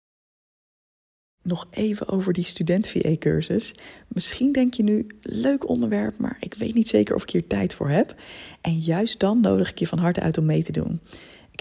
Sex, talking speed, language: female, 185 wpm, Dutch